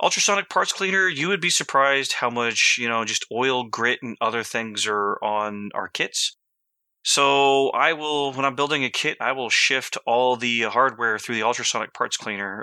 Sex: male